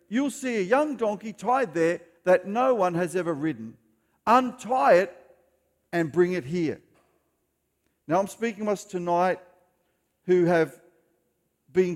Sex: male